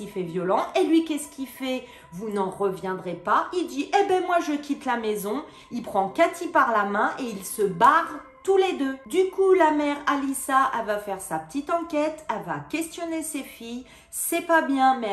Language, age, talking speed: French, 40-59, 215 wpm